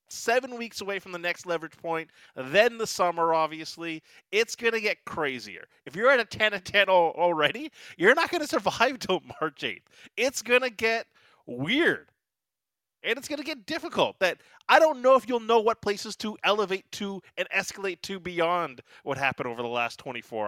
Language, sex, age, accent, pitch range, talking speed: English, male, 30-49, American, 135-220 Hz, 180 wpm